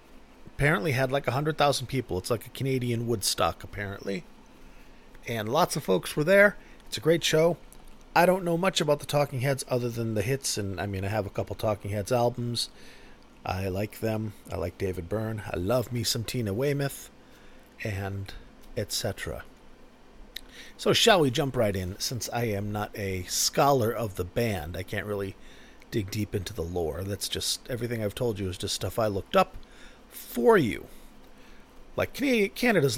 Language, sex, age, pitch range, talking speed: English, male, 40-59, 100-135 Hz, 180 wpm